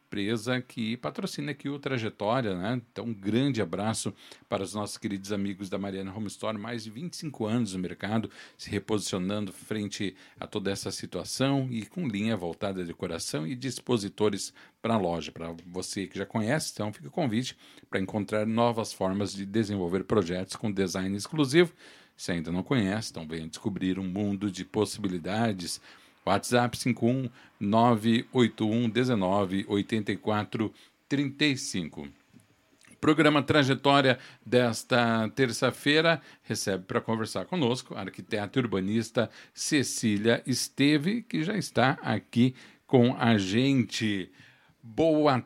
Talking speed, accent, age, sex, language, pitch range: 130 wpm, Brazilian, 50-69, male, Portuguese, 100-125 Hz